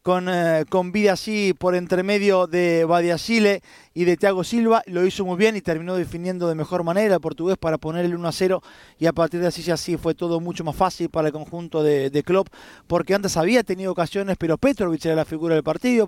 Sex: male